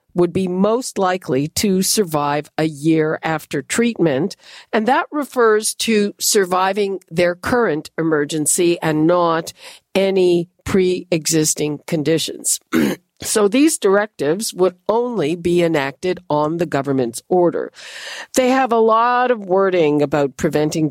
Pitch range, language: 160-210 Hz, English